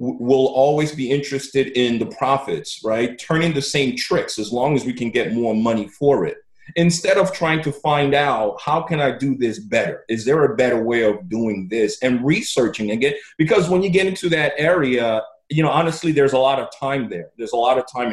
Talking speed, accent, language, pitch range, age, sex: 220 wpm, American, English, 115-145 Hz, 30-49, male